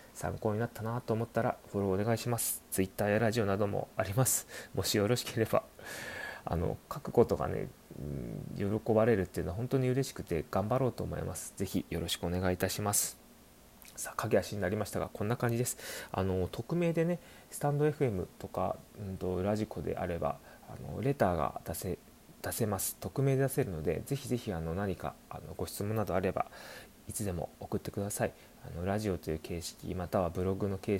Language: Japanese